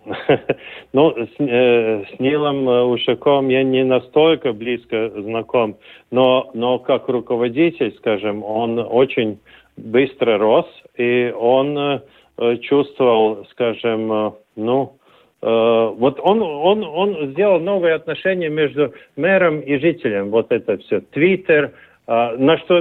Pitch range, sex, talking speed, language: 125-165 Hz, male, 115 wpm, Russian